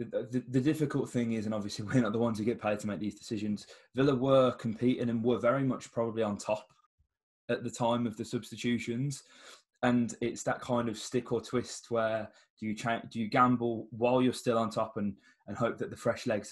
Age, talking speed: 20-39, 225 wpm